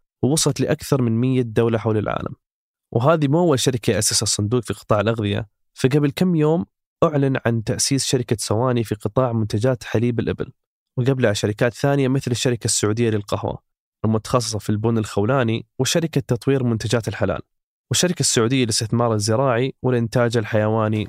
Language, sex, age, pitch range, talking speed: Arabic, male, 20-39, 110-135 Hz, 140 wpm